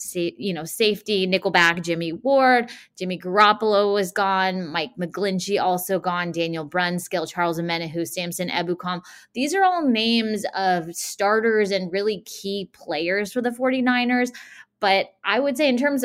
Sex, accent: female, American